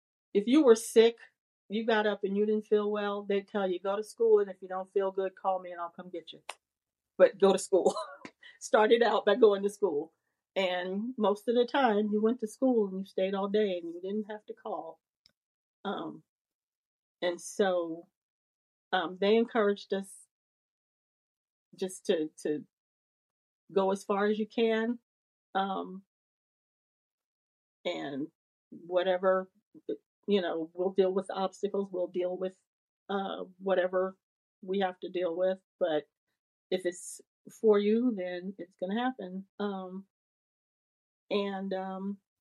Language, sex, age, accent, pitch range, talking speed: English, female, 40-59, American, 180-210 Hz, 155 wpm